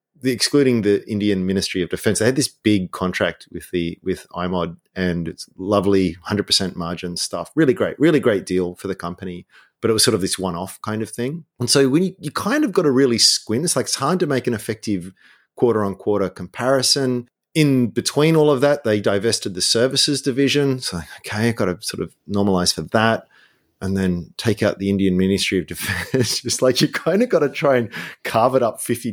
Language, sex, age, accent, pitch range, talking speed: English, male, 30-49, Australian, 95-130 Hz, 215 wpm